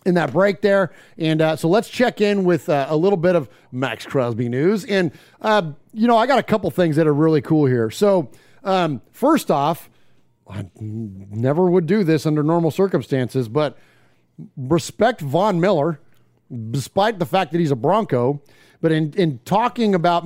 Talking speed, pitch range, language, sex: 185 wpm, 145-185 Hz, English, male